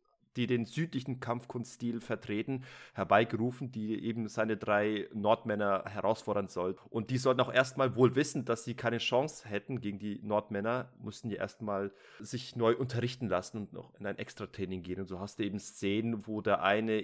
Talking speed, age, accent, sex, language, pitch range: 175 wpm, 30-49, German, male, German, 105-130 Hz